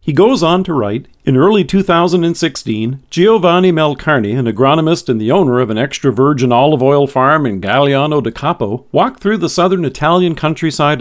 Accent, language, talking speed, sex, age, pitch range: American, English, 175 wpm, male, 50-69, 125-175 Hz